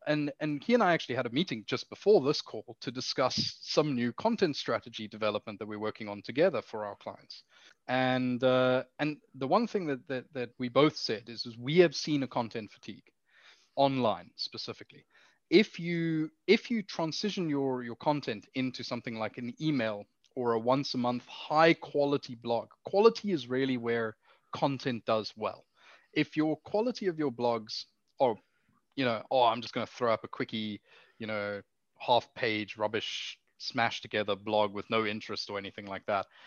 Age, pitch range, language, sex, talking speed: 20-39, 115-150 Hz, English, male, 185 wpm